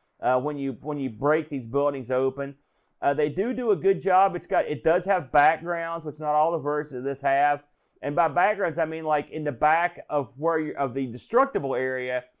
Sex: male